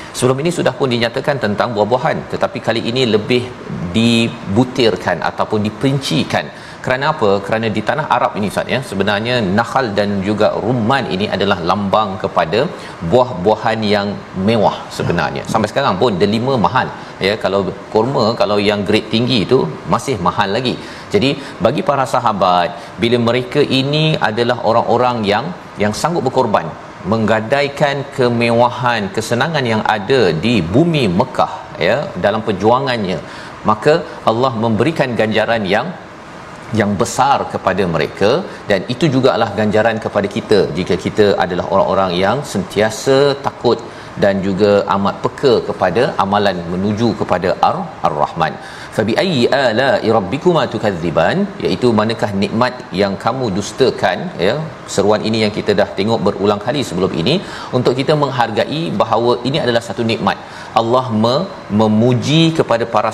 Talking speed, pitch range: 135 wpm, 105-130 Hz